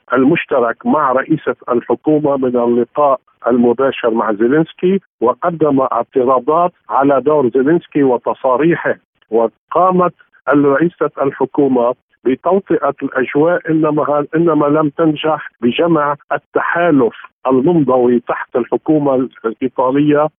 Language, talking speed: Arabic, 90 wpm